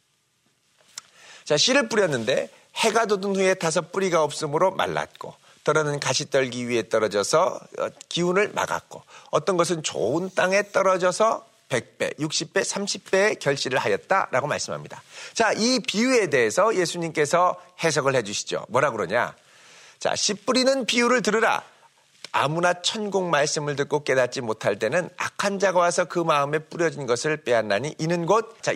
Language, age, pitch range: Korean, 40-59, 155-220 Hz